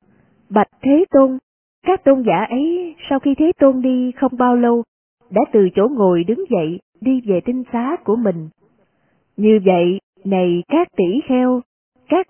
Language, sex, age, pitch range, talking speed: Vietnamese, female, 20-39, 185-265 Hz, 165 wpm